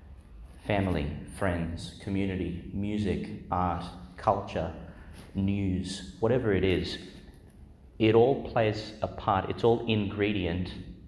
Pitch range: 85-100 Hz